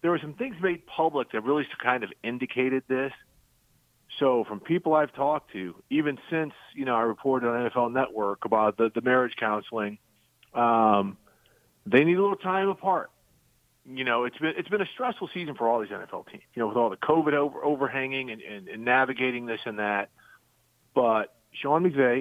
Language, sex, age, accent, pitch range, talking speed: English, male, 40-59, American, 110-135 Hz, 190 wpm